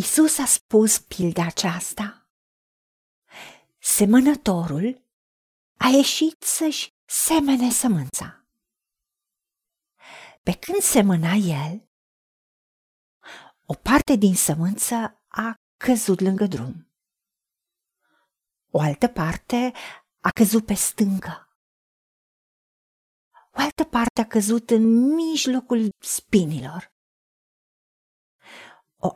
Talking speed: 80 wpm